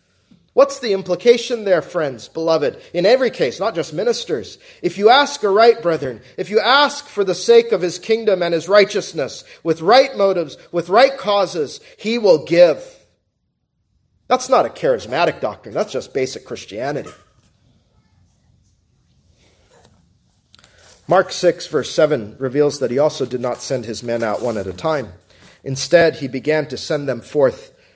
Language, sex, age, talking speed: English, male, 40-59, 155 wpm